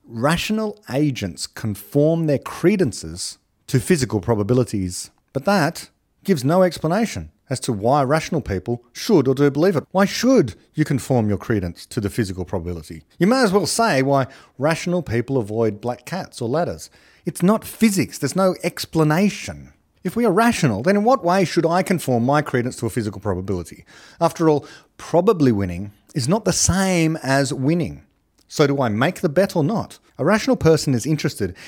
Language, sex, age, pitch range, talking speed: English, male, 40-59, 105-170 Hz, 175 wpm